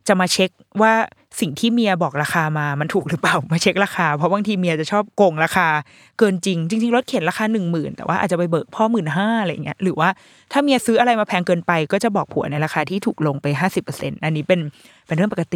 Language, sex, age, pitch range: Thai, female, 20-39, 170-240 Hz